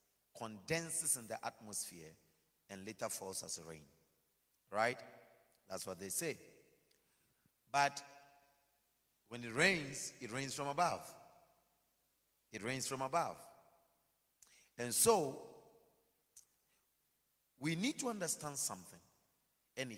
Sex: male